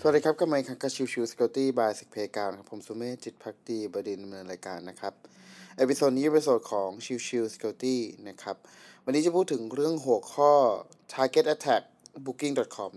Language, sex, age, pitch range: Thai, male, 20-39, 115-155 Hz